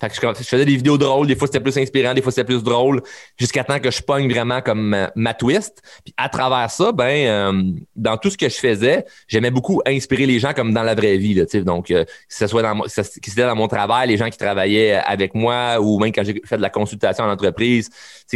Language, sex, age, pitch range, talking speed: French, male, 30-49, 100-125 Hz, 265 wpm